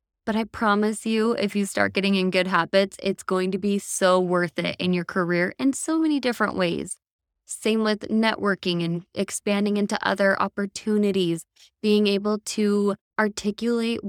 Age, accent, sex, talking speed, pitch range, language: 20-39, American, female, 160 wpm, 180-215 Hz, English